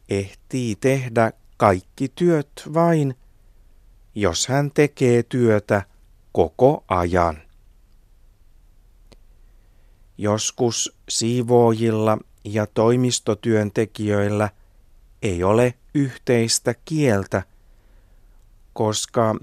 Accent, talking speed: native, 60 wpm